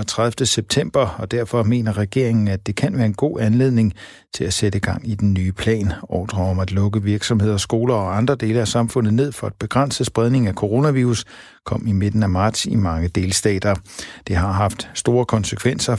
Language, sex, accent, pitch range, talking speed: Danish, male, native, 95-120 Hz, 195 wpm